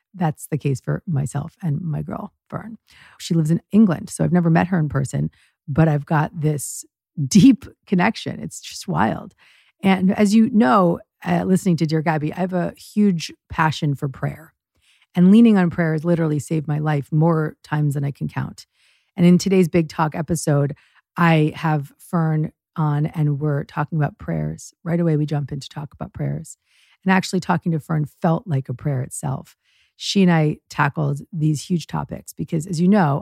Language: English